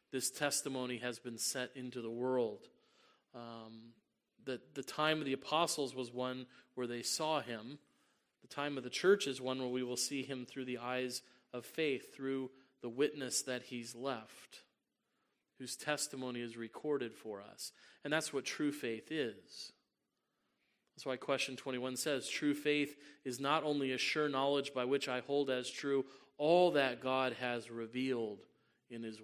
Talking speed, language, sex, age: 170 wpm, English, male, 30-49